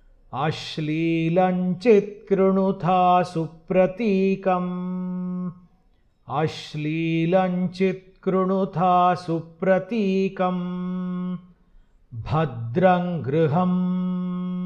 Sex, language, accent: male, Hindi, native